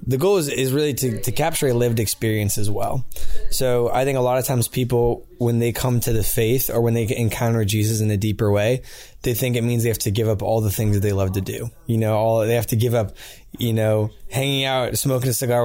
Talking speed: 260 wpm